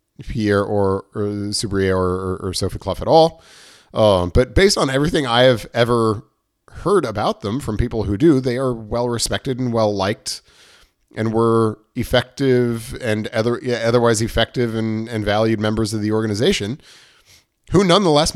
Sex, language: male, English